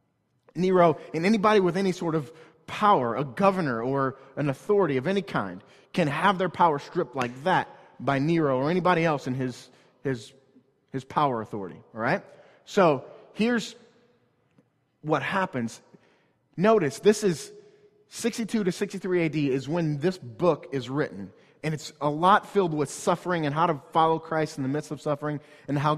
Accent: American